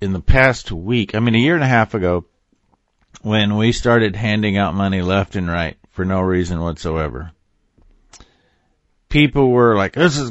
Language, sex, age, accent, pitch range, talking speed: English, male, 50-69, American, 95-120 Hz, 175 wpm